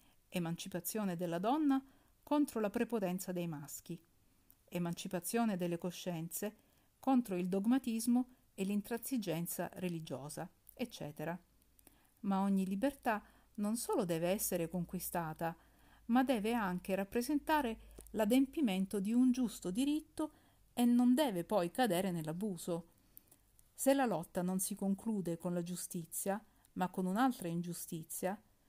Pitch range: 175-240 Hz